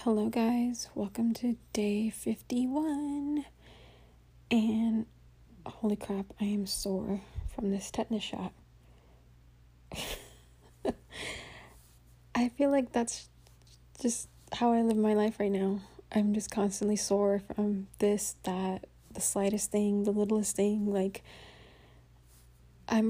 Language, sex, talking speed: English, female, 110 wpm